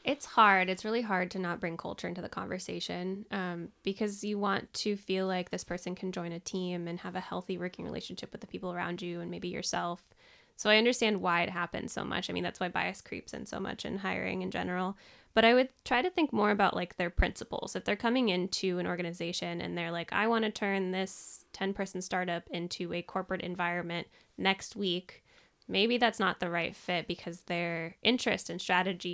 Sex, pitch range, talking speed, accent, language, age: female, 175-210 Hz, 215 wpm, American, English, 10-29